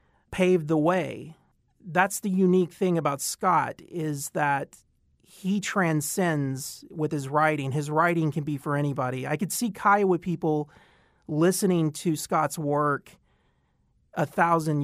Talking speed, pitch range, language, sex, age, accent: 135 wpm, 145-170 Hz, English, male, 40-59, American